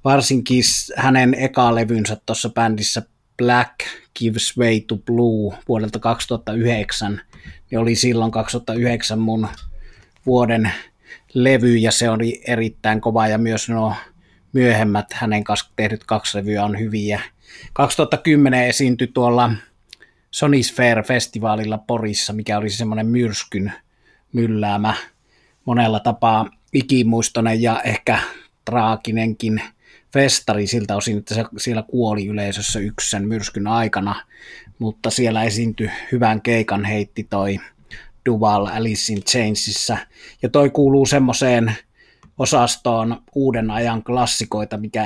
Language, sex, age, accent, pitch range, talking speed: Finnish, male, 30-49, native, 105-120 Hz, 110 wpm